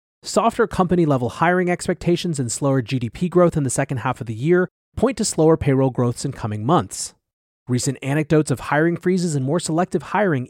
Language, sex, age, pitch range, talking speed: English, male, 30-49, 125-160 Hz, 185 wpm